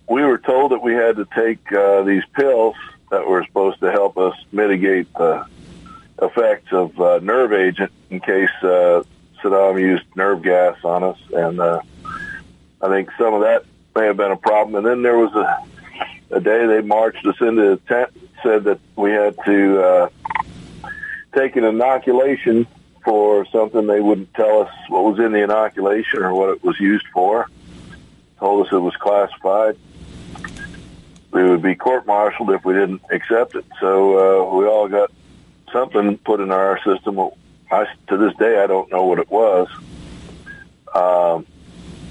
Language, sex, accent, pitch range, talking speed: English, male, American, 95-110 Hz, 170 wpm